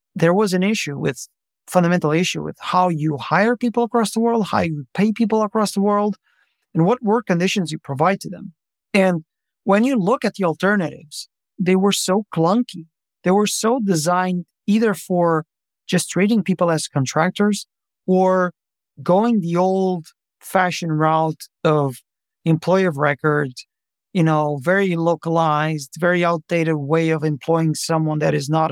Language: English